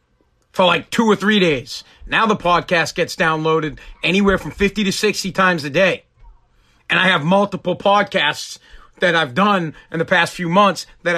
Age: 40-59